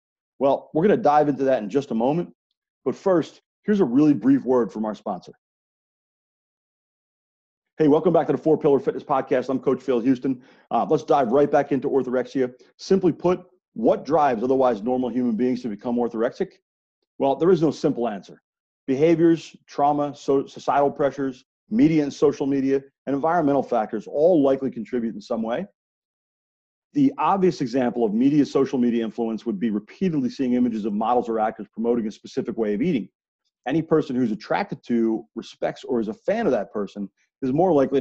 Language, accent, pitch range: English, American, 120-160 Hz